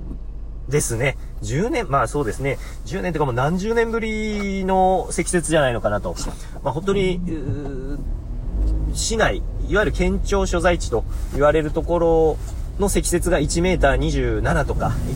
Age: 30-49